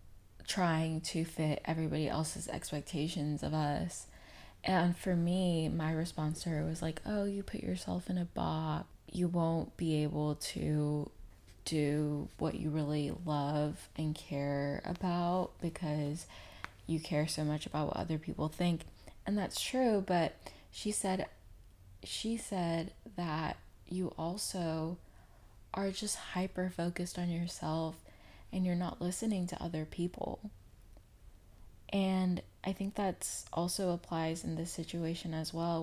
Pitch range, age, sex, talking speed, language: 150-180 Hz, 20-39, female, 135 wpm, English